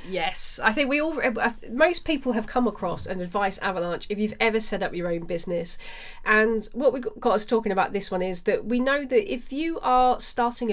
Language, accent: English, British